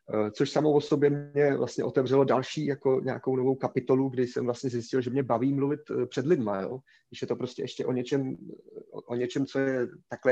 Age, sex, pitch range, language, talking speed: 30-49, male, 120-140 Hz, Czech, 205 wpm